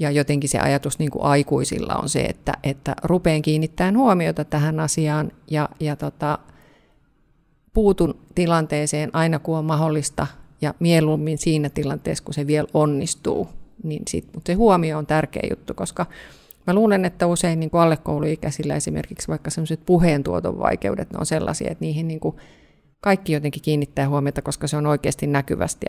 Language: Finnish